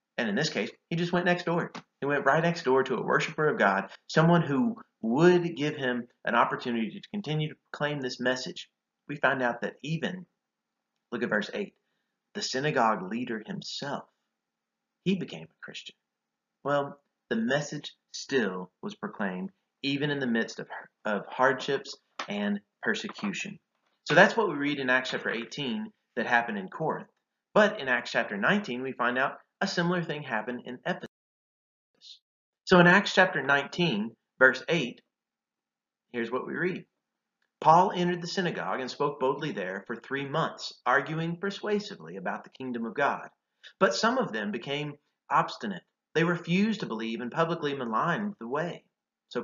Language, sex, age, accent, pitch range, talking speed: English, male, 30-49, American, 130-190 Hz, 165 wpm